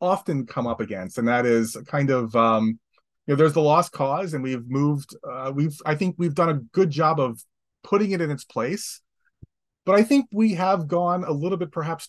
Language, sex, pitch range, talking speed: English, male, 120-175 Hz, 220 wpm